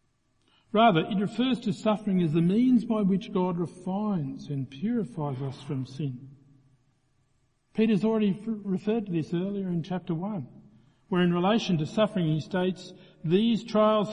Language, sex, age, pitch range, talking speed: English, male, 50-69, 135-185 Hz, 150 wpm